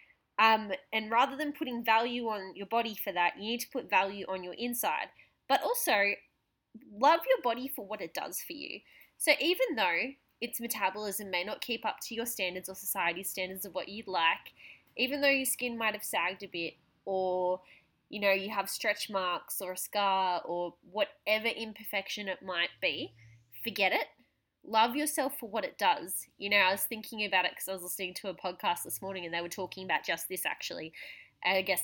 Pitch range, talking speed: 185-235 Hz, 205 wpm